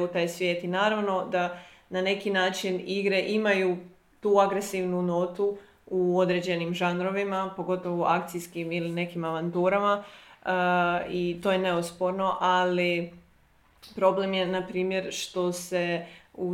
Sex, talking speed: female, 130 wpm